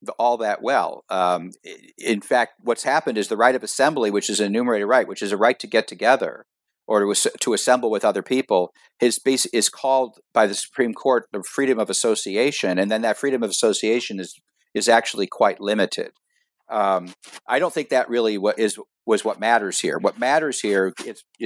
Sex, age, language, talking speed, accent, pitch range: male, 50-69, English, 200 wpm, American, 100-135 Hz